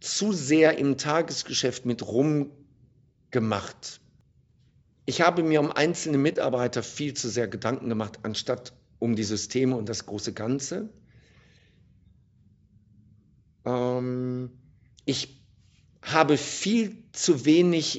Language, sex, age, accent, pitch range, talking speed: German, male, 50-69, German, 125-170 Hz, 105 wpm